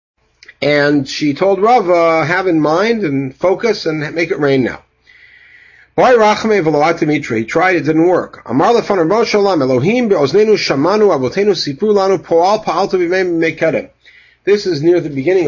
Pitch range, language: 135-205 Hz, English